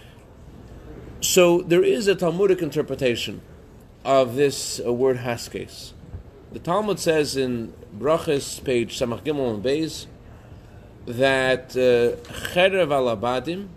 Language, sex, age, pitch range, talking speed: English, male, 30-49, 115-150 Hz, 100 wpm